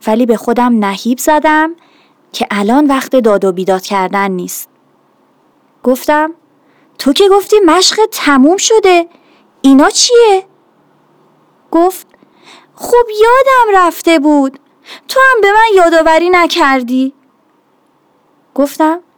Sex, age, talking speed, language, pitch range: female, 30-49, 105 wpm, Persian, 235-345 Hz